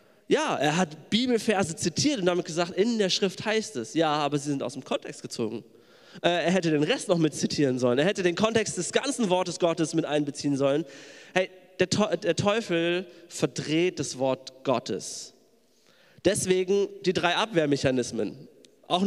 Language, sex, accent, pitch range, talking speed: German, male, German, 150-195 Hz, 165 wpm